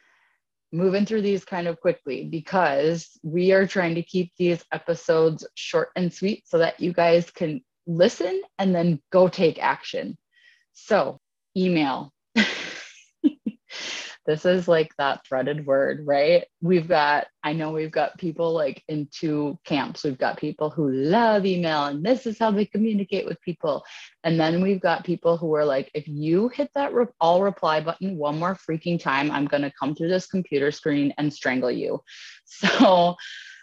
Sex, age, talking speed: female, 20-39, 165 wpm